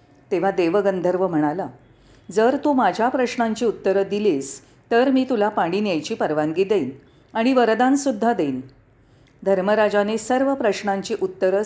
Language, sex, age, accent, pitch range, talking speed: Marathi, female, 40-59, native, 165-235 Hz, 120 wpm